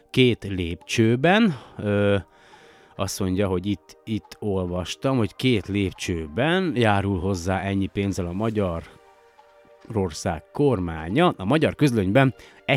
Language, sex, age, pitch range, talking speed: Hungarian, male, 30-49, 95-120 Hz, 115 wpm